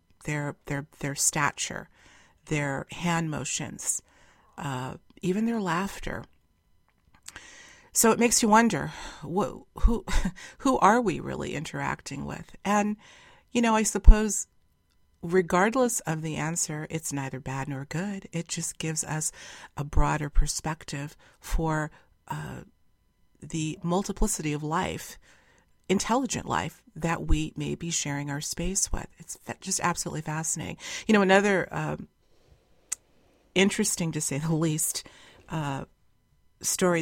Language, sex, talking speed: English, female, 120 wpm